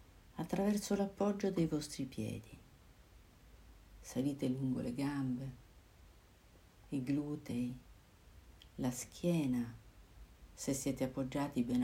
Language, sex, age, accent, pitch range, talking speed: Italian, female, 50-69, native, 110-165 Hz, 85 wpm